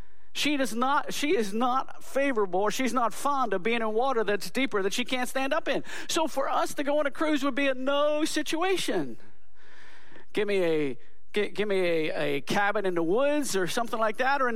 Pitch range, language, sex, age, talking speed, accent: 180-260 Hz, English, male, 50-69, 225 wpm, American